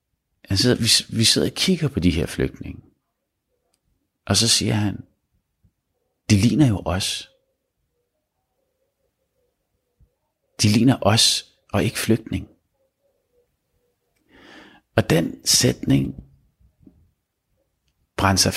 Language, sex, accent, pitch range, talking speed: Danish, male, native, 95-140 Hz, 90 wpm